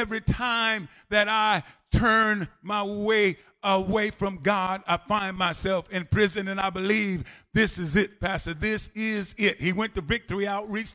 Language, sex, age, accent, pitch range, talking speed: English, male, 50-69, American, 175-215 Hz, 165 wpm